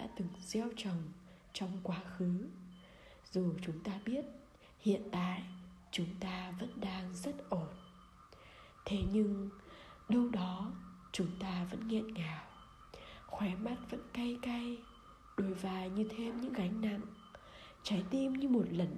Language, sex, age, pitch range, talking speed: Vietnamese, female, 20-39, 180-230 Hz, 140 wpm